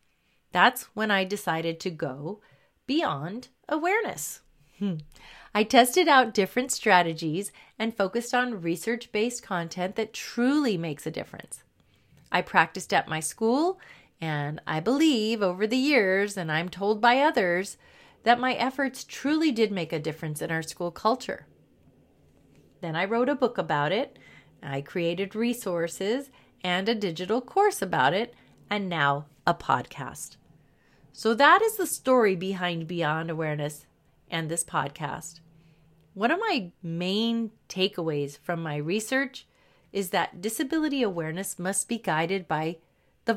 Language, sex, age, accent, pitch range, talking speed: English, female, 30-49, American, 165-235 Hz, 135 wpm